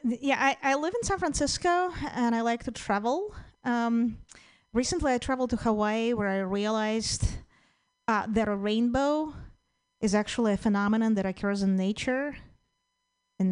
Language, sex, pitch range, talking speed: English, female, 210-265 Hz, 150 wpm